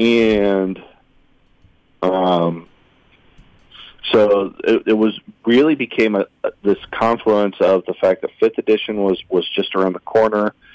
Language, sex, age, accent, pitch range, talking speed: English, male, 40-59, American, 90-105 Hz, 135 wpm